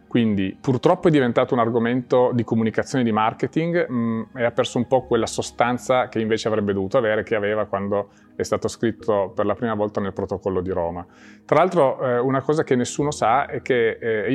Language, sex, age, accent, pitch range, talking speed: Italian, male, 30-49, native, 110-140 Hz, 200 wpm